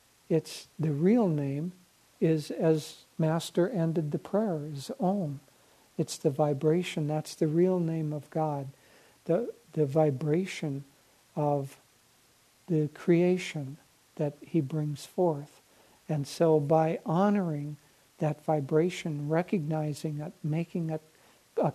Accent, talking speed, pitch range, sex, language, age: American, 115 wpm, 150-180 Hz, male, English, 60-79